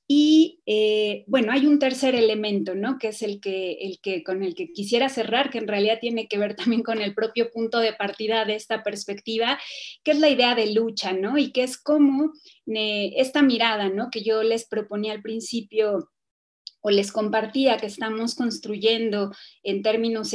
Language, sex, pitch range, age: Spanish, female, 205-245 Hz, 30-49